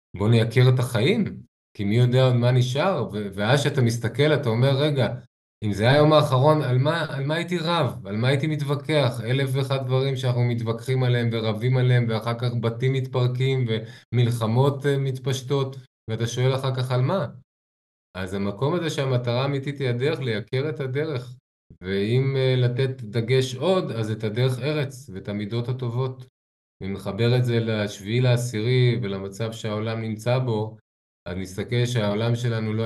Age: 20-39